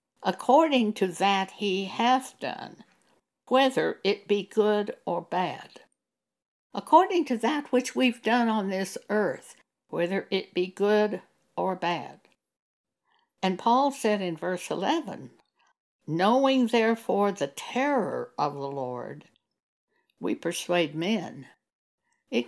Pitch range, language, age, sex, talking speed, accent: 185-250 Hz, English, 60-79, female, 115 wpm, American